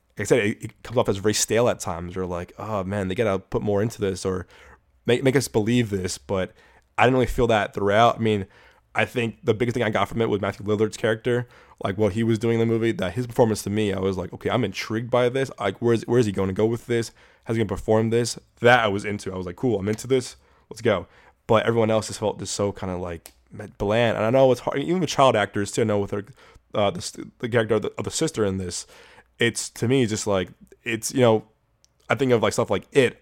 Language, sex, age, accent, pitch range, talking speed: English, male, 20-39, American, 100-120 Hz, 275 wpm